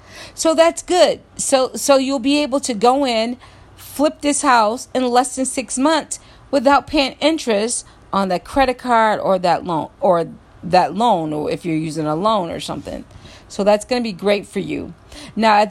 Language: English